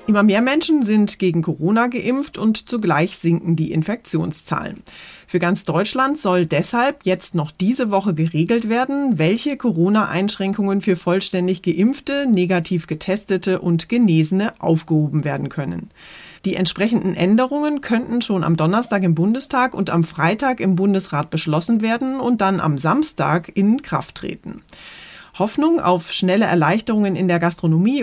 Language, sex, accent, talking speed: German, female, German, 140 wpm